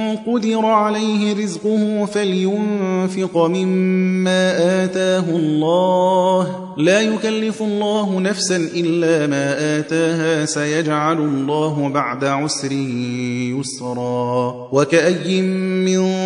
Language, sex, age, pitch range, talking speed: Persian, male, 30-49, 160-185 Hz, 85 wpm